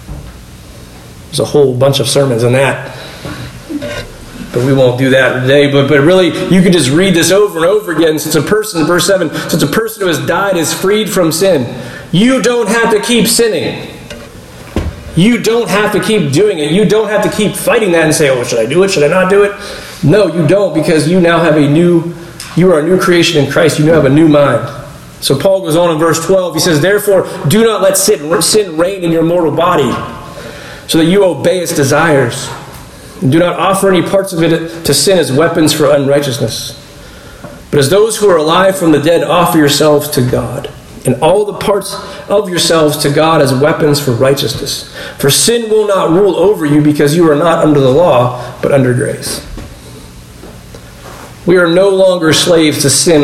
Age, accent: 40-59, American